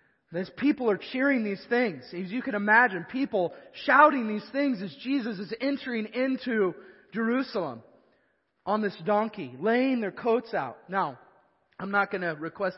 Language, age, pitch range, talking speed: English, 30-49, 190-265 Hz, 155 wpm